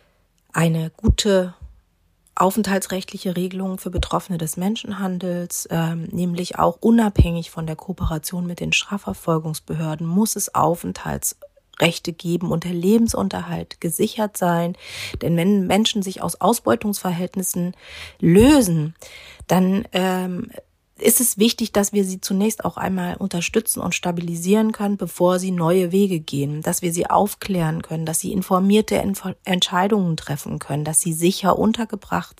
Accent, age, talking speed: German, 30-49, 130 wpm